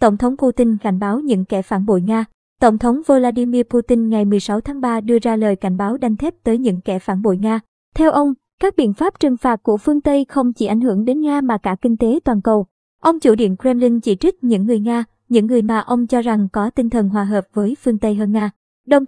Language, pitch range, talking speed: Vietnamese, 210-255 Hz, 250 wpm